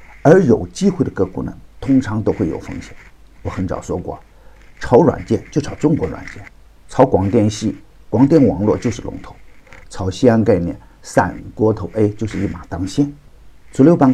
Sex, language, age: male, Chinese, 50-69